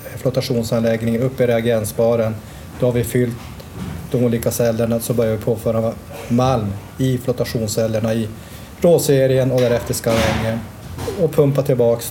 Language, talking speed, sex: Swedish, 135 wpm, male